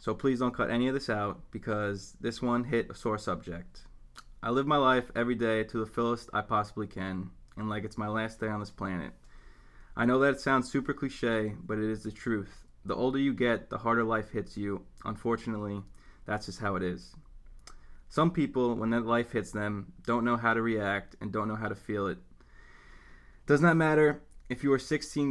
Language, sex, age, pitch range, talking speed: English, male, 20-39, 100-120 Hz, 215 wpm